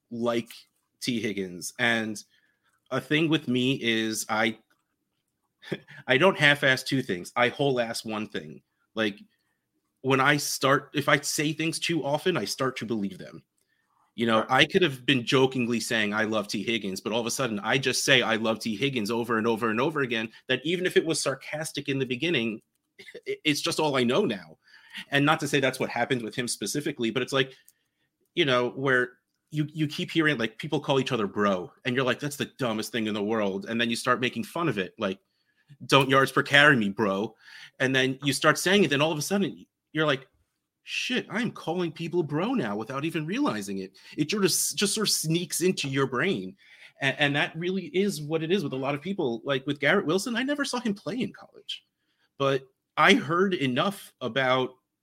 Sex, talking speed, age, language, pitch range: male, 210 wpm, 30-49, English, 120-155 Hz